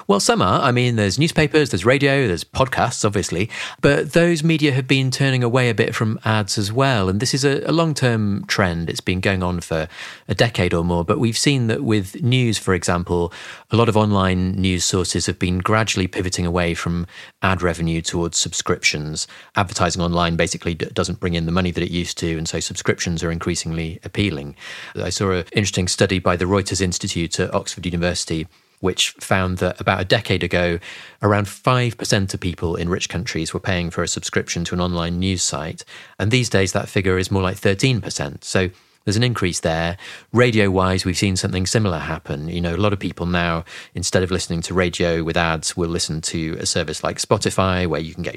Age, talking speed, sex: 30-49, 205 wpm, male